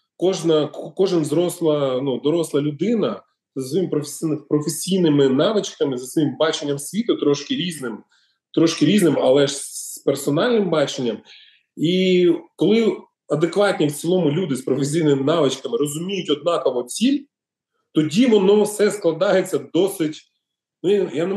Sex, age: male, 30-49